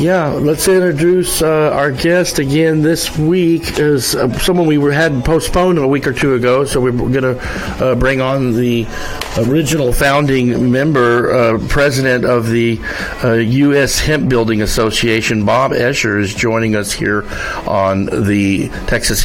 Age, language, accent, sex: 50-69, English, American, male